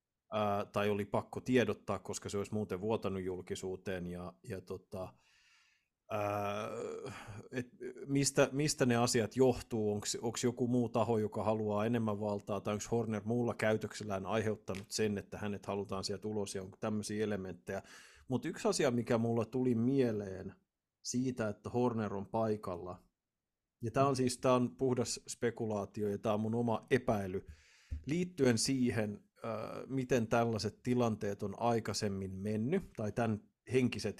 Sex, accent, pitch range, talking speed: male, native, 105-125 Hz, 140 wpm